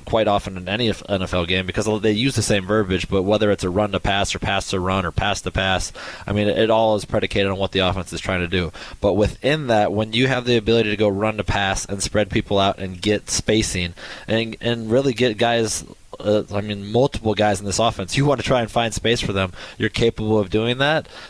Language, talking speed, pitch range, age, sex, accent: English, 225 wpm, 100-120 Hz, 20-39, male, American